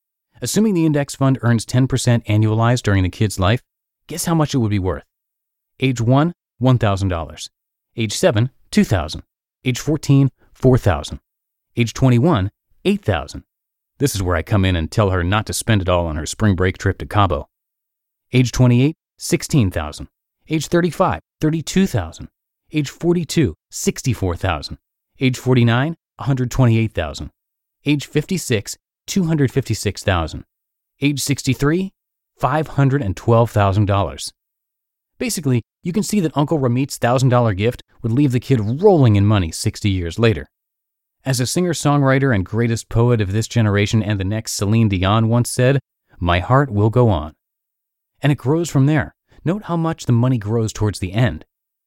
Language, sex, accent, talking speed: English, male, American, 140 wpm